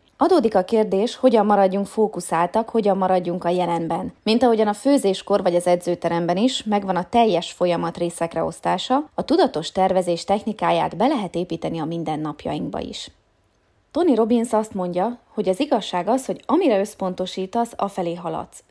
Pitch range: 180-230 Hz